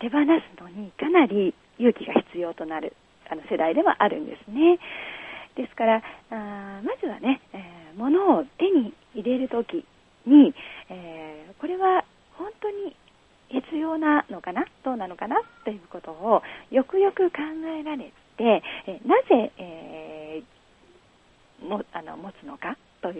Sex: female